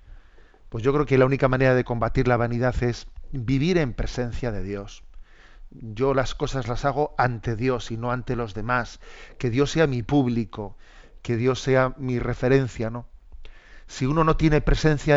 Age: 40-59